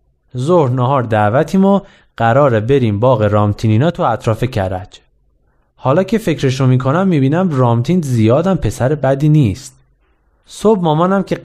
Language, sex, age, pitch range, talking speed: Persian, male, 20-39, 120-150 Hz, 130 wpm